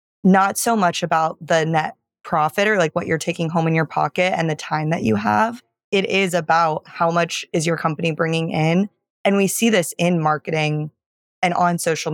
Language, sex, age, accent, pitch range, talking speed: English, female, 20-39, American, 160-185 Hz, 205 wpm